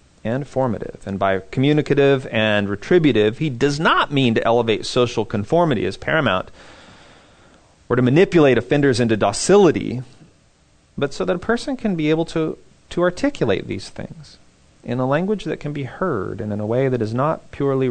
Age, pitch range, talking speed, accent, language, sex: 30-49, 110-145 Hz, 170 wpm, American, English, male